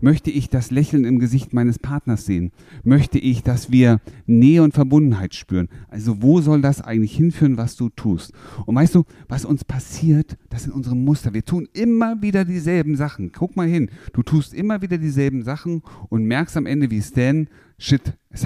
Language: German